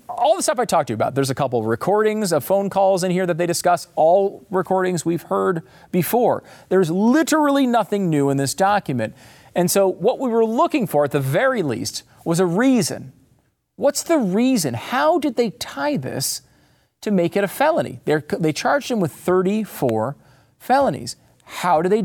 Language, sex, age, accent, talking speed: English, male, 40-59, American, 185 wpm